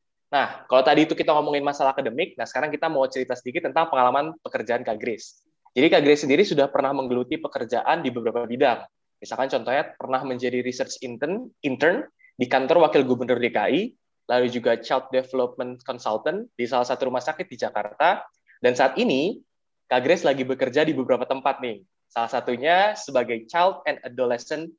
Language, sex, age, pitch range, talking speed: Indonesian, male, 20-39, 125-150 Hz, 165 wpm